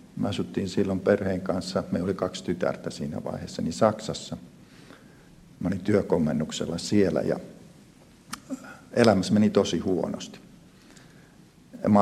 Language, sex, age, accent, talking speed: Finnish, male, 50-69, native, 115 wpm